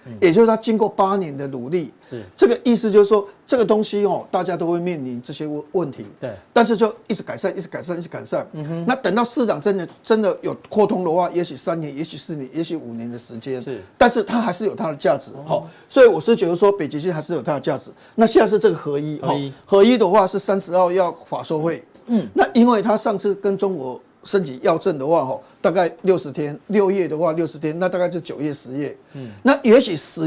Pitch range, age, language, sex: 155-215 Hz, 50-69, Chinese, male